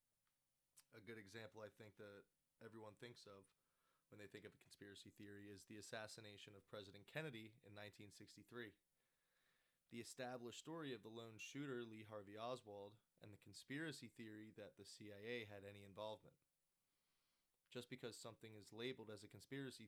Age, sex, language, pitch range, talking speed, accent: 20-39, male, English, 100-115 Hz, 155 wpm, American